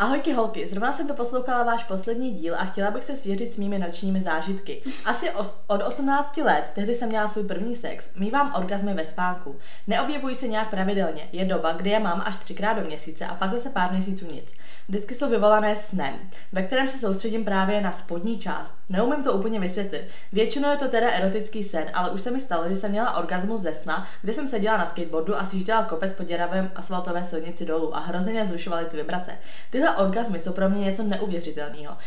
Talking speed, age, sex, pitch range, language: 200 wpm, 20-39, female, 175-220 Hz, Czech